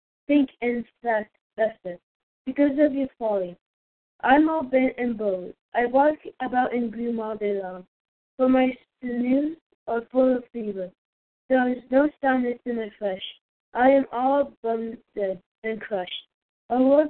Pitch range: 210-265 Hz